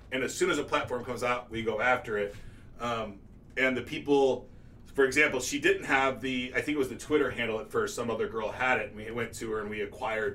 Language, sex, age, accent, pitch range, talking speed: English, male, 30-49, American, 110-135 Hz, 255 wpm